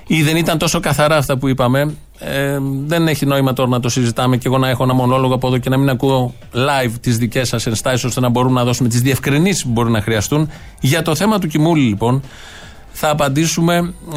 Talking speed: 215 wpm